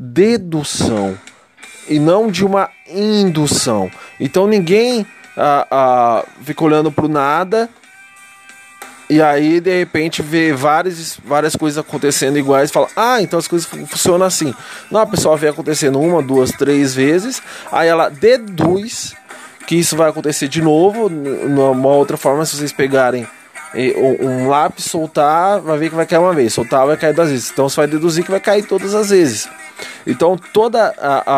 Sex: male